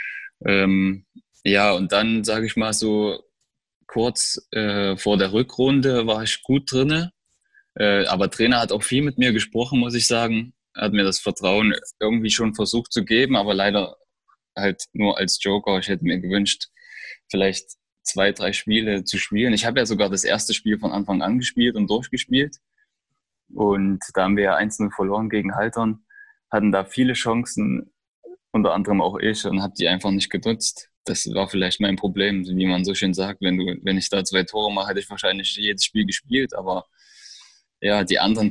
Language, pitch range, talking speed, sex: German, 100-115 Hz, 185 wpm, male